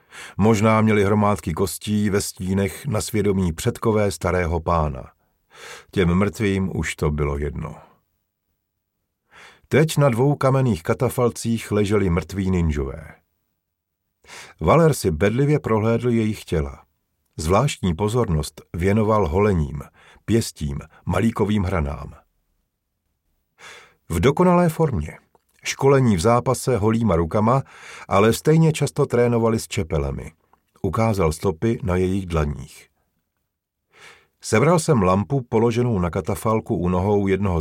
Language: Czech